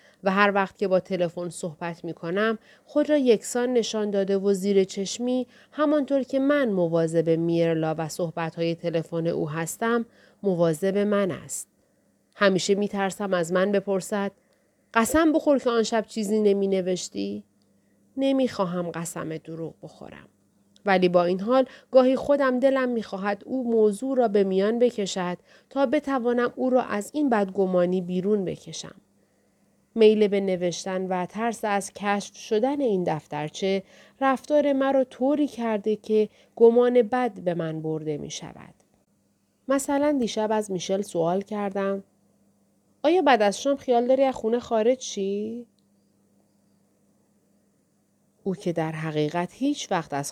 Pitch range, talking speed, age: 170-240 Hz, 140 wpm, 40-59